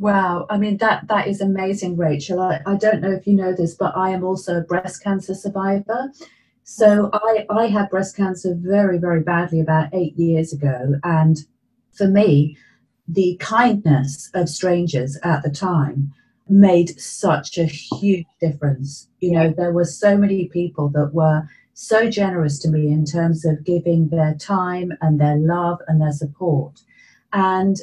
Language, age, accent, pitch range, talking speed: English, 40-59, British, 165-200 Hz, 170 wpm